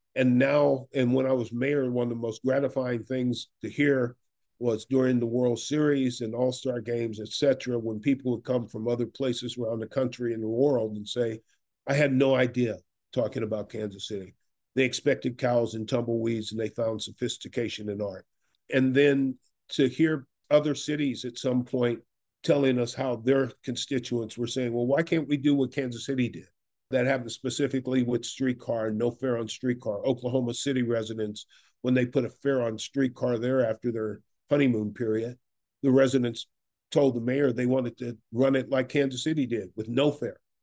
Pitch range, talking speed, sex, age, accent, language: 115-135 Hz, 185 wpm, male, 50-69, American, English